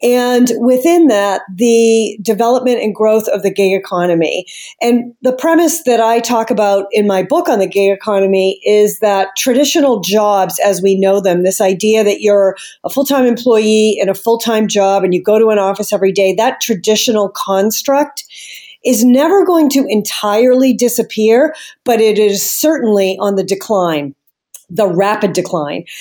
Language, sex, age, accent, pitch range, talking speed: English, female, 40-59, American, 195-245 Hz, 165 wpm